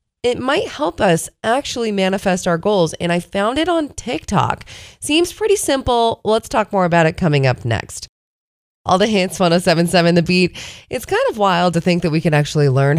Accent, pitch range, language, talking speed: American, 145-210 Hz, English, 195 wpm